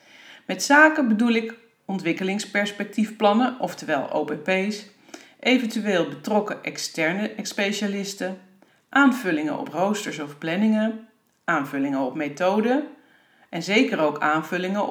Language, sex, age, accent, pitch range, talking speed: Dutch, female, 40-59, Dutch, 165-235 Hz, 95 wpm